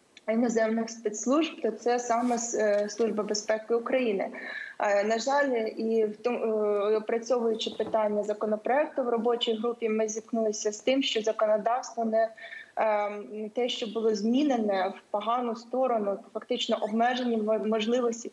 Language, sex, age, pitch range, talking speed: Ukrainian, female, 20-39, 215-240 Hz, 110 wpm